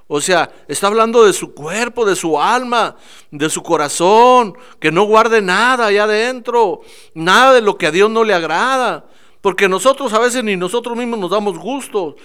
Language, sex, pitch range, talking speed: Spanish, male, 175-240 Hz, 185 wpm